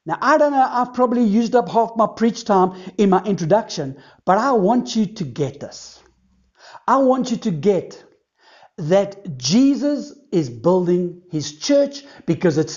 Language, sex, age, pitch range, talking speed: English, male, 60-79, 170-230 Hz, 165 wpm